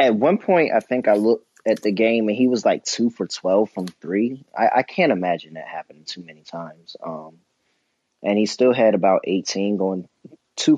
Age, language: 20-39, English